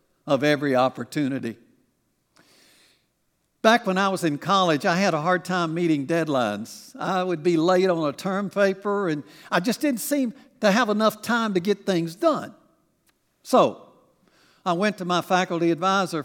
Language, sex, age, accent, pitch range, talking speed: English, male, 60-79, American, 170-235 Hz, 165 wpm